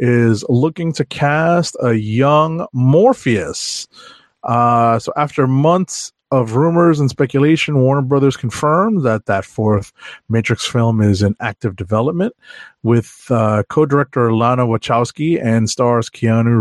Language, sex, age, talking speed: English, male, 30-49, 125 wpm